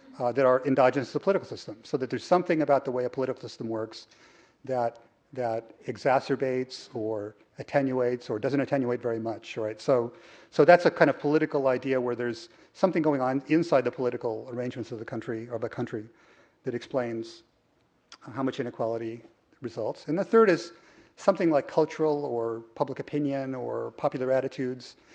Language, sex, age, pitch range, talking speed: English, male, 40-59, 120-150 Hz, 170 wpm